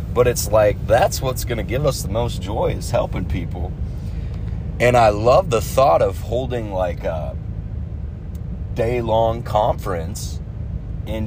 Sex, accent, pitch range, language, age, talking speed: male, American, 90-120 Hz, English, 30-49, 150 wpm